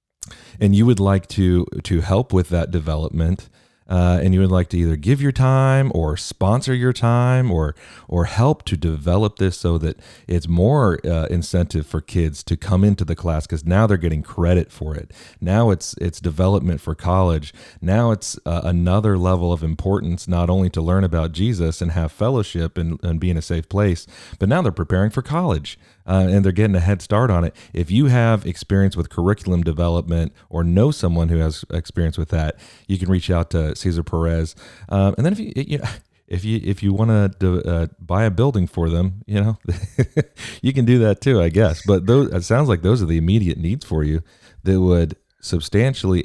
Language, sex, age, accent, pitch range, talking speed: English, male, 40-59, American, 85-105 Hz, 205 wpm